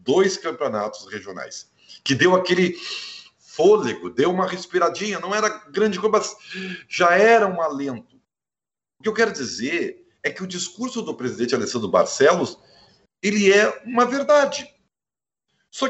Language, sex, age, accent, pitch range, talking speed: Portuguese, male, 50-69, Brazilian, 140-225 Hz, 135 wpm